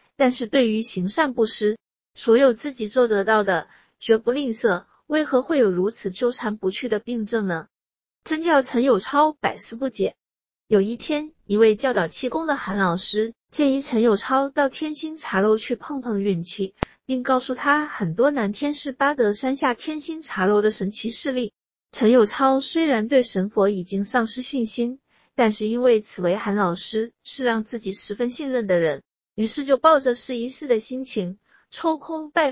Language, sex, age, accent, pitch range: Chinese, female, 50-69, native, 210-280 Hz